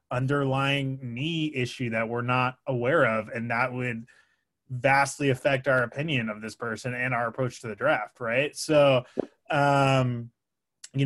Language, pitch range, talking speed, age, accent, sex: English, 120-140 Hz, 150 wpm, 20-39, American, male